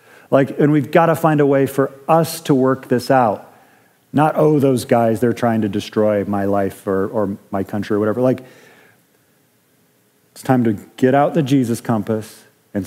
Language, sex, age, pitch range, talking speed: English, male, 40-59, 110-135 Hz, 185 wpm